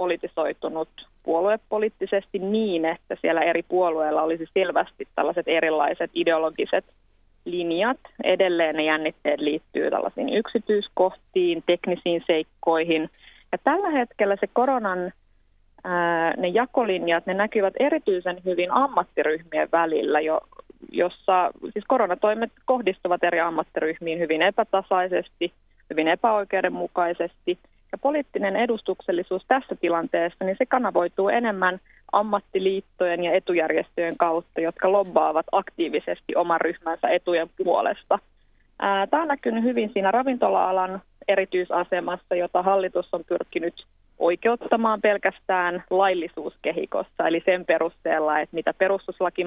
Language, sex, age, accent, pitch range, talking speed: Finnish, female, 30-49, native, 170-205 Hz, 95 wpm